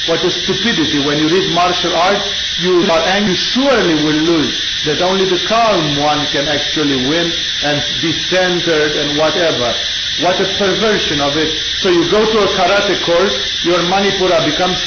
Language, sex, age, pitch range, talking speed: English, male, 50-69, 150-190 Hz, 175 wpm